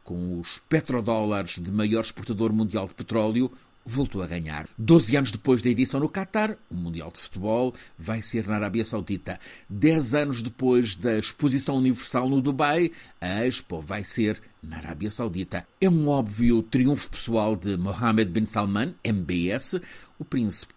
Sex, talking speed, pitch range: male, 160 wpm, 100-135 Hz